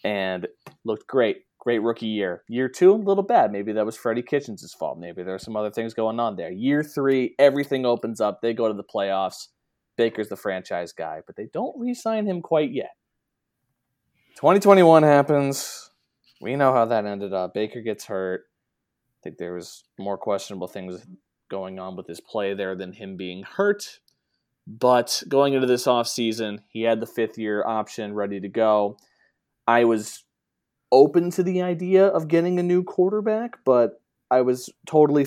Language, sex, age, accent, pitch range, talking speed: English, male, 20-39, American, 100-135 Hz, 175 wpm